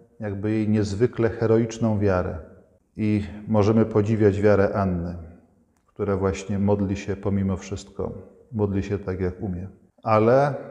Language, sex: Polish, male